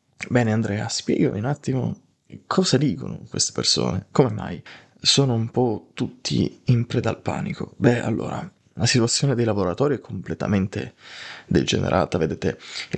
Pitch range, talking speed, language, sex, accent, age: 100-125 Hz, 140 wpm, Italian, male, native, 20-39